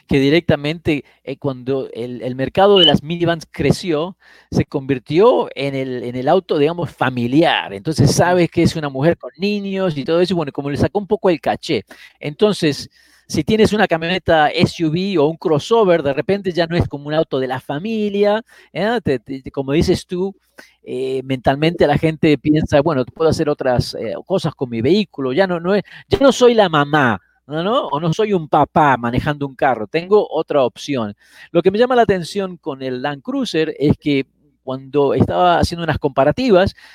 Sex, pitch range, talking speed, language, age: male, 140-190 Hz, 195 wpm, Spanish, 40-59